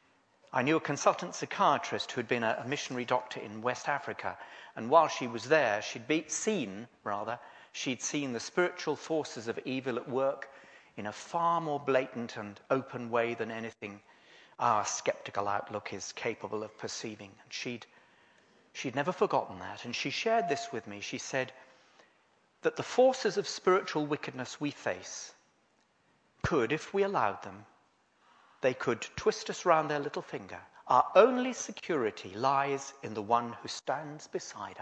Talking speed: 160 wpm